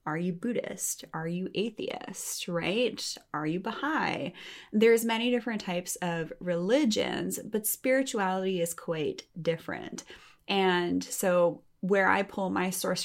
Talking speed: 130 wpm